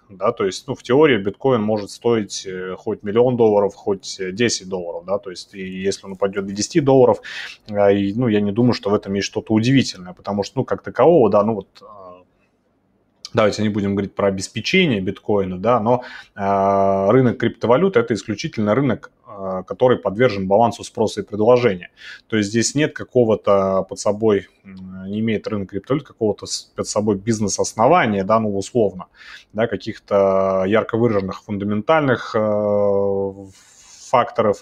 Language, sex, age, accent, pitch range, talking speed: Russian, male, 30-49, native, 95-115 Hz, 150 wpm